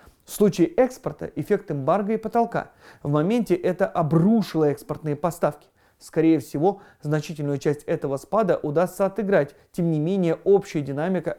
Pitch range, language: 145-180 Hz, Russian